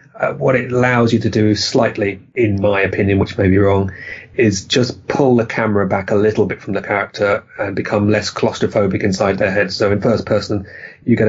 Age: 30-49